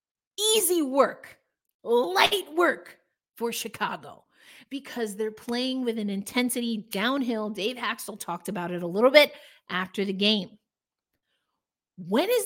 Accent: American